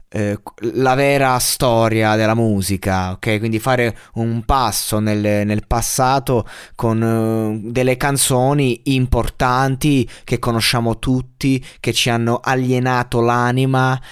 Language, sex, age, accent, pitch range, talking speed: Italian, male, 20-39, native, 105-130 Hz, 105 wpm